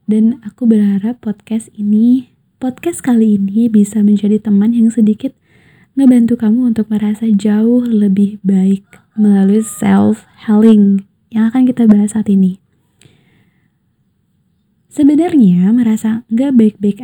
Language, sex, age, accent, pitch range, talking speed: Indonesian, female, 20-39, native, 200-235 Hz, 115 wpm